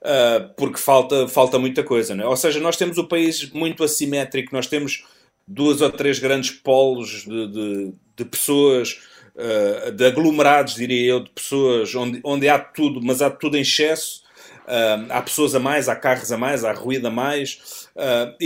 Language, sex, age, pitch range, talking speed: Portuguese, male, 30-49, 135-165 Hz, 180 wpm